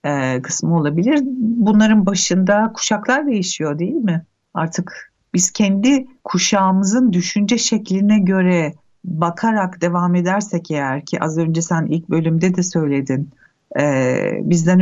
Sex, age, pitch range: female, 60-79, 160-195 Hz